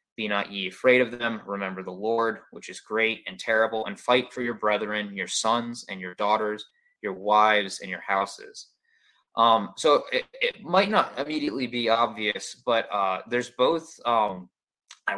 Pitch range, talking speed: 100-125 Hz, 175 wpm